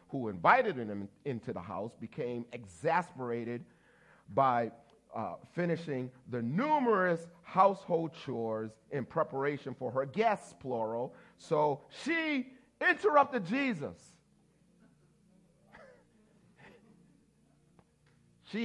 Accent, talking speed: American, 85 wpm